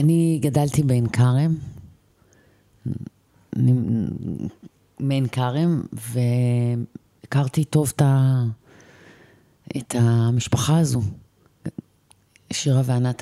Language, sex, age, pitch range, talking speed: Hebrew, female, 30-49, 115-140 Hz, 75 wpm